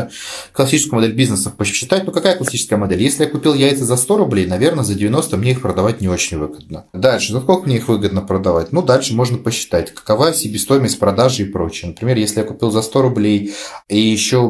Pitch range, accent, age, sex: 105-135 Hz, native, 30-49, male